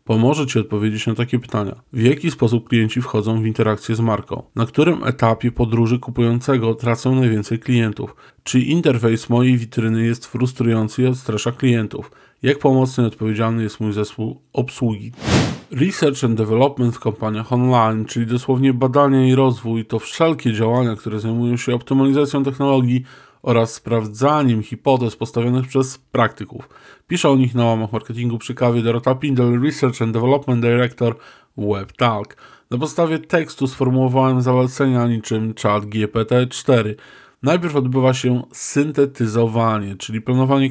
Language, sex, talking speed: Polish, male, 140 wpm